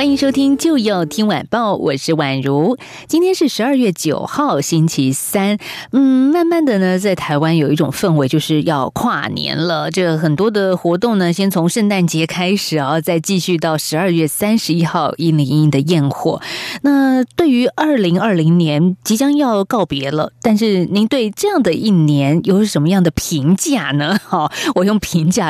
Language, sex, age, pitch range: Chinese, female, 20-39, 155-210 Hz